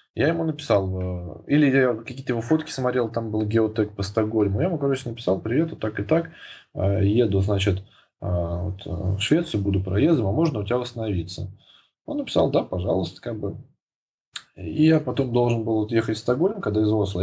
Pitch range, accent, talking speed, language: 95-125 Hz, native, 185 wpm, Russian